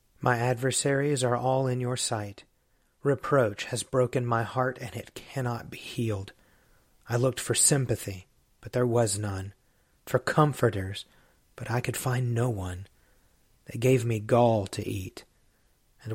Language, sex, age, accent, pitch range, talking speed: English, male, 40-59, American, 110-130 Hz, 150 wpm